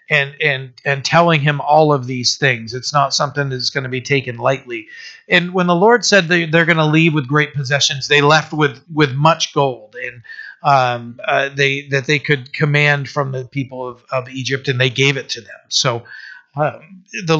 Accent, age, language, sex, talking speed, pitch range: American, 40-59, English, male, 205 wpm, 130-160 Hz